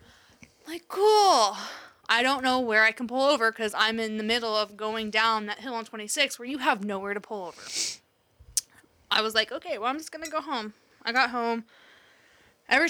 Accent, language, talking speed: American, English, 205 wpm